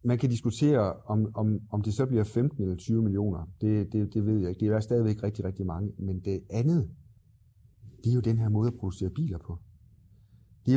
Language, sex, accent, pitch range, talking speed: Danish, male, native, 100-120 Hz, 225 wpm